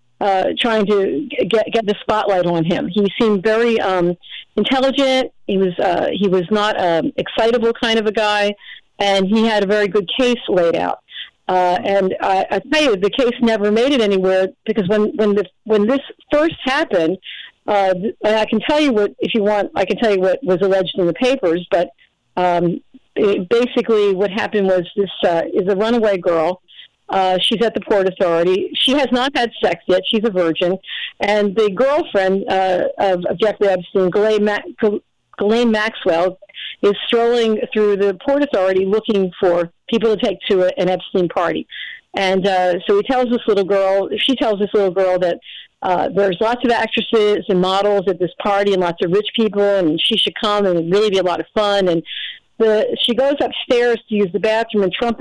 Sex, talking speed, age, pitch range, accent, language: female, 190 wpm, 50-69, 185-225 Hz, American, English